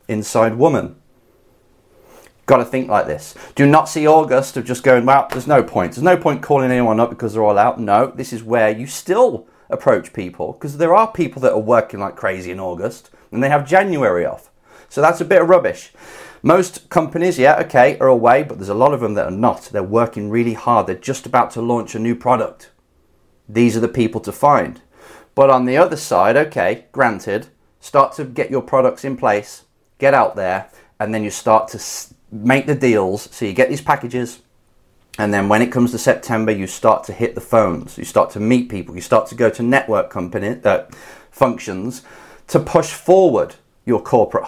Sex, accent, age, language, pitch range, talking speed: male, British, 30-49, English, 110-150 Hz, 205 wpm